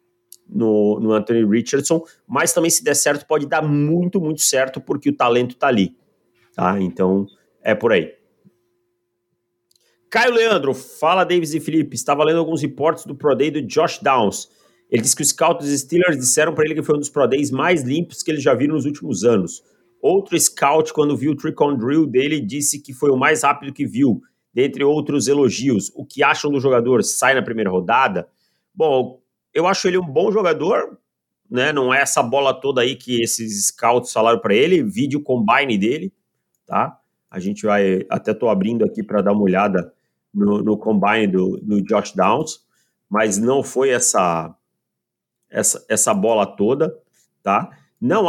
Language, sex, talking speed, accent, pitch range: Portuguese, male, 180 wpm, Brazilian, 115-155 Hz